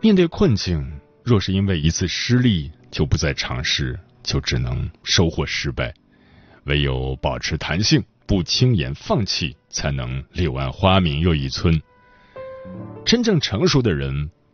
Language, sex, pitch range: Chinese, male, 75-110 Hz